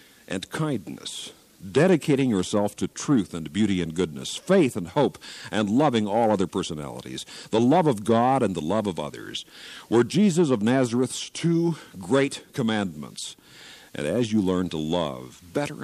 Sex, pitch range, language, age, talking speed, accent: male, 95-140 Hz, English, 60-79, 155 wpm, American